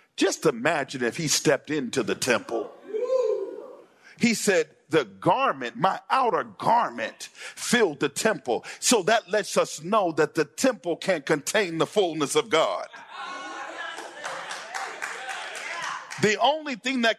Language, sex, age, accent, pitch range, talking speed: English, male, 50-69, American, 180-245 Hz, 125 wpm